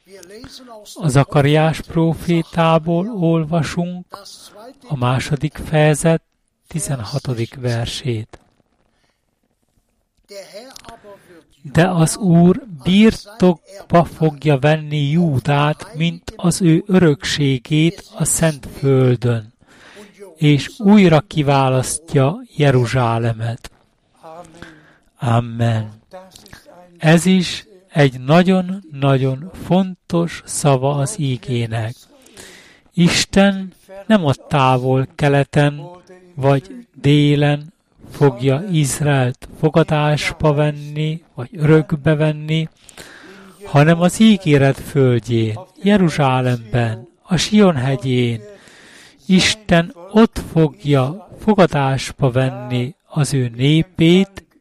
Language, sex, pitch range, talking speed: Hungarian, male, 135-175 Hz, 75 wpm